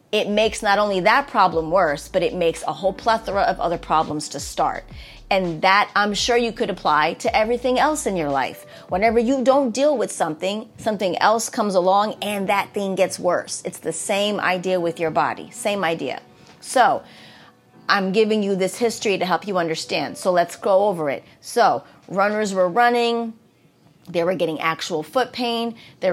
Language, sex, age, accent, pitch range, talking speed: English, female, 30-49, American, 175-225 Hz, 185 wpm